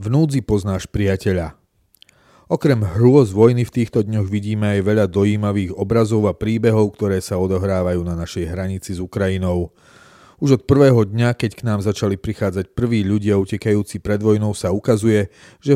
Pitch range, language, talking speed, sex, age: 100-120 Hz, Slovak, 155 wpm, male, 40-59